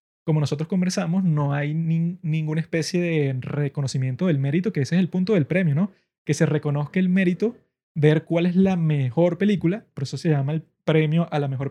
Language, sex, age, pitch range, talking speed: Spanish, male, 20-39, 150-180 Hz, 205 wpm